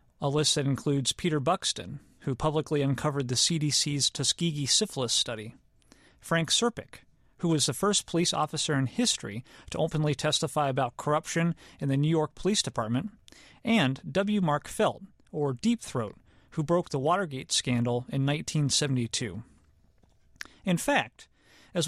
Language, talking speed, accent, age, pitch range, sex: English, 145 wpm, American, 40-59, 135-170 Hz, male